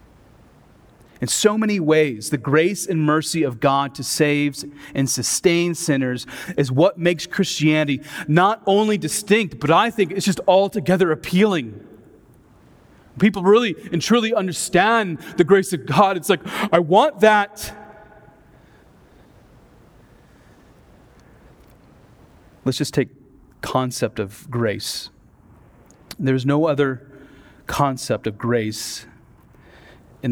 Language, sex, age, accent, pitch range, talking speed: English, male, 30-49, American, 115-160 Hz, 110 wpm